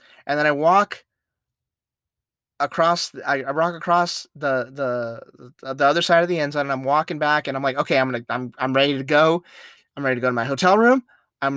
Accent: American